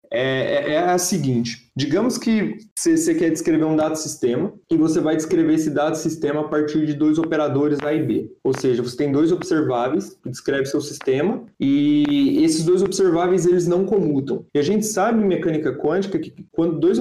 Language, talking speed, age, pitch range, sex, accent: Portuguese, 180 wpm, 20-39, 140-185 Hz, male, Brazilian